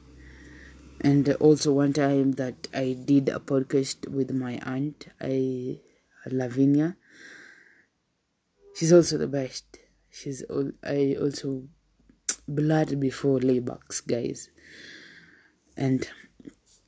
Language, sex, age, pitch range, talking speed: English, female, 20-39, 135-155 Hz, 95 wpm